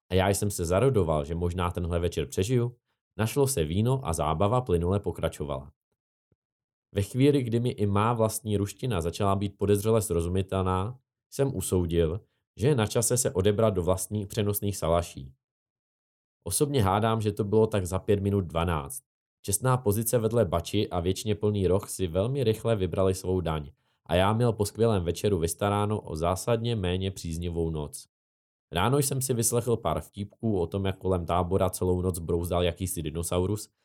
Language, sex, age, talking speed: Czech, male, 20-39, 165 wpm